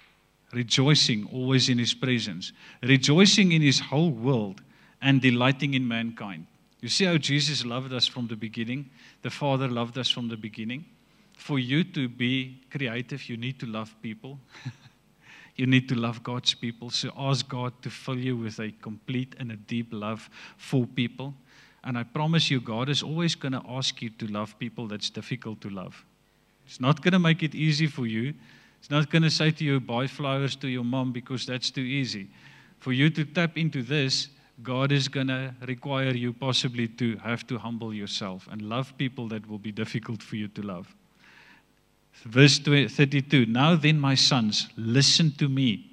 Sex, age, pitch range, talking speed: male, 50-69, 115-140 Hz, 185 wpm